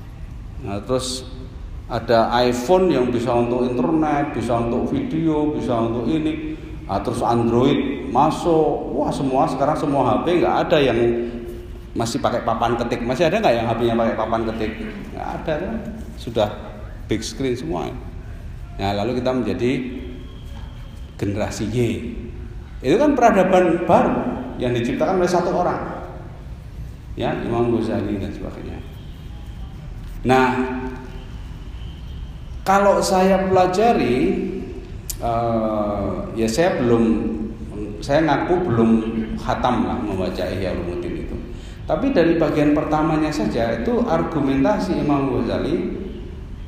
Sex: male